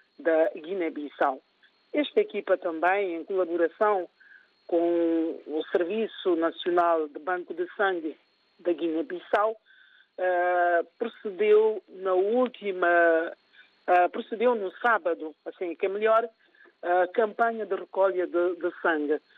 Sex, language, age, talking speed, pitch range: male, Portuguese, 50-69, 115 wpm, 175-220 Hz